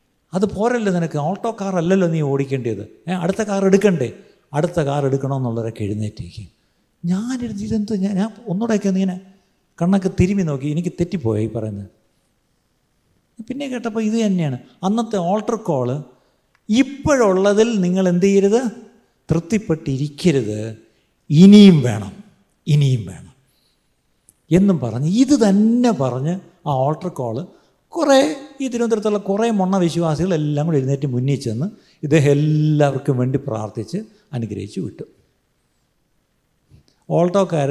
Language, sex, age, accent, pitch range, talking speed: Malayalam, male, 50-69, native, 130-195 Hz, 105 wpm